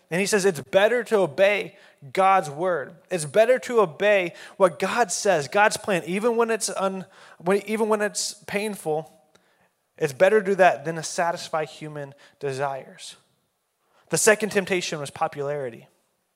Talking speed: 155 wpm